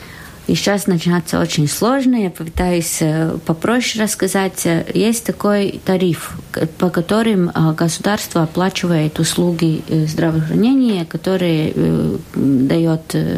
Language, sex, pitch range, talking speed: Russian, female, 160-195 Hz, 90 wpm